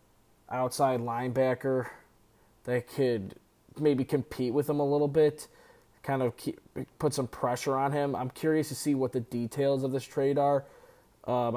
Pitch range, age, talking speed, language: 120-150 Hz, 20-39, 155 wpm, English